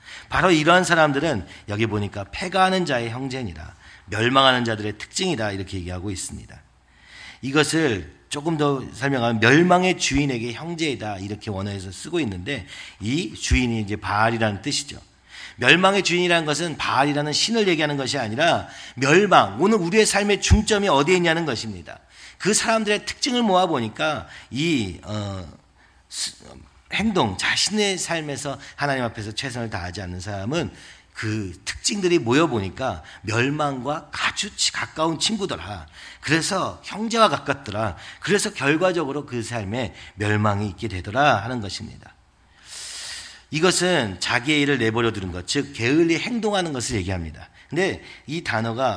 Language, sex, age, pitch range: Korean, male, 40-59, 105-165 Hz